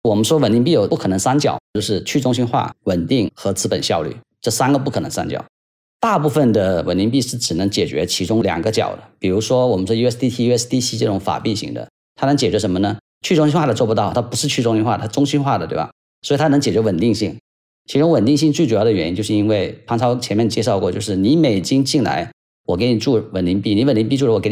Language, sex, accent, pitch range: Chinese, male, native, 105-140 Hz